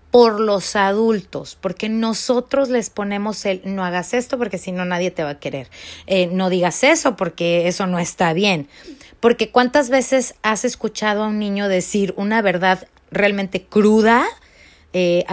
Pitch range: 180-230 Hz